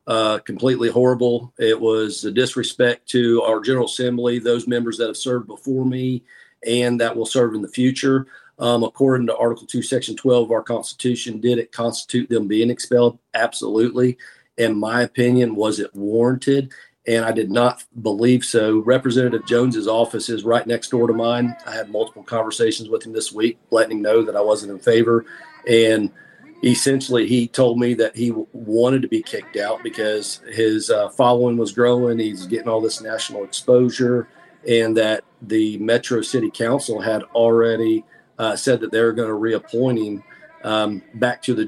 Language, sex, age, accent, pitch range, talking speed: English, male, 40-59, American, 110-125 Hz, 180 wpm